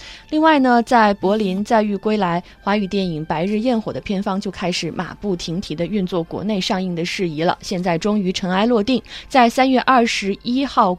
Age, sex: 20-39, female